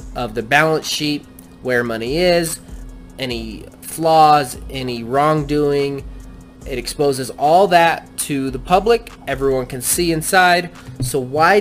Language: English